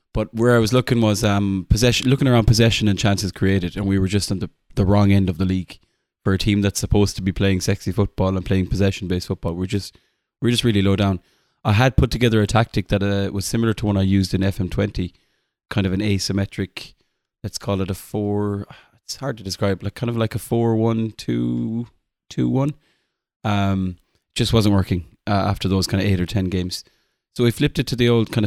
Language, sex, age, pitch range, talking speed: English, male, 20-39, 95-115 Hz, 230 wpm